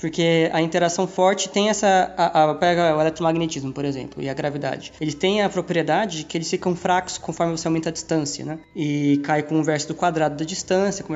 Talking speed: 220 wpm